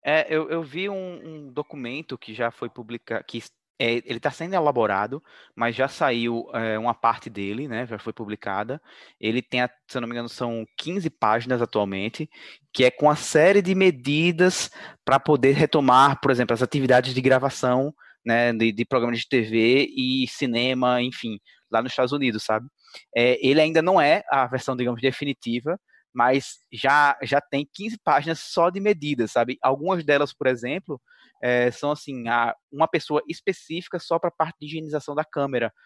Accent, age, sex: Brazilian, 20-39, male